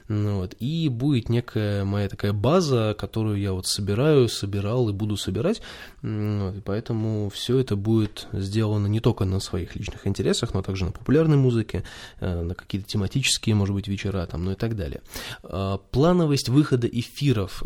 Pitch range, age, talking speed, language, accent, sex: 95-120 Hz, 20-39, 160 wpm, Russian, native, male